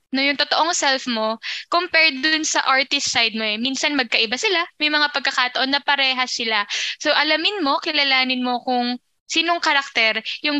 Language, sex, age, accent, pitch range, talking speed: Filipino, female, 10-29, native, 235-290 Hz, 170 wpm